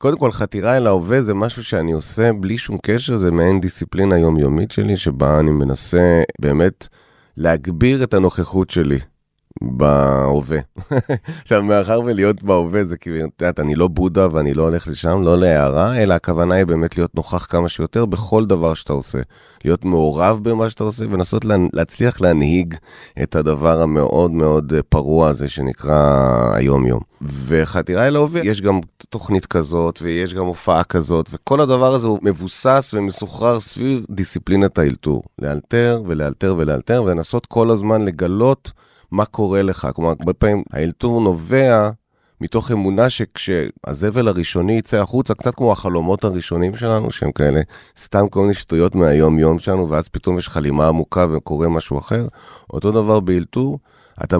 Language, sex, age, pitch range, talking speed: Hebrew, male, 30-49, 80-110 Hz, 150 wpm